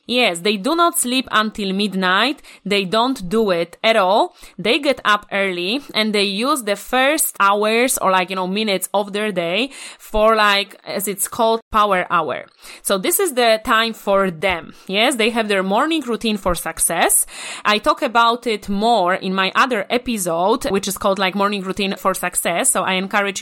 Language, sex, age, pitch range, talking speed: English, female, 20-39, 190-235 Hz, 185 wpm